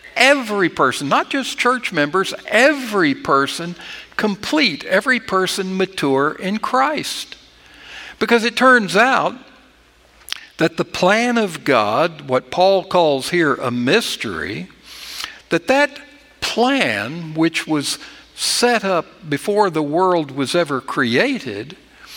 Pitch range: 155-225 Hz